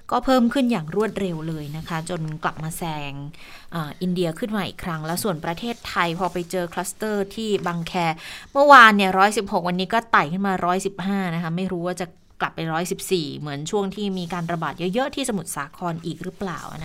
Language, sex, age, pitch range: Thai, female, 20-39, 165-200 Hz